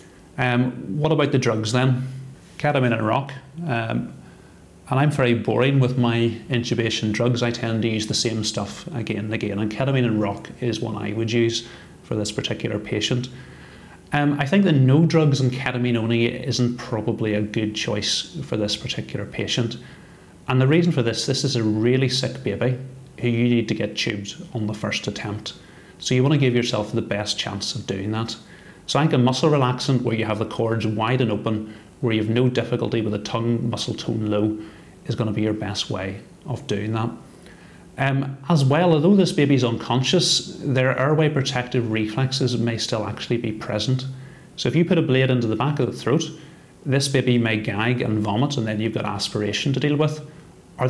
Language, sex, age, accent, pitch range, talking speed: English, male, 30-49, British, 110-130 Hz, 200 wpm